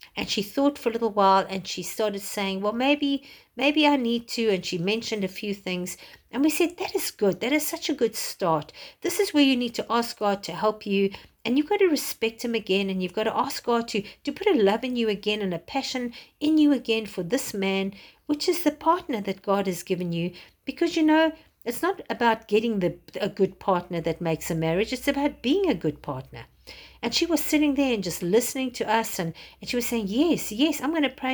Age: 50-69